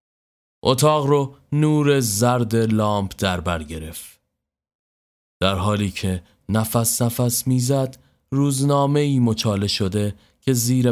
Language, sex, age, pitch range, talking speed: Persian, male, 30-49, 85-115 Hz, 105 wpm